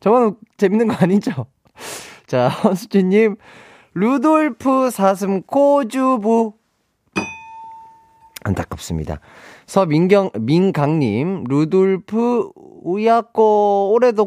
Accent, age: native, 30-49